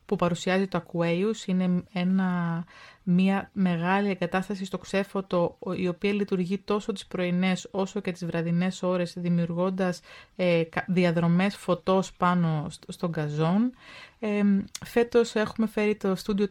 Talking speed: 125 wpm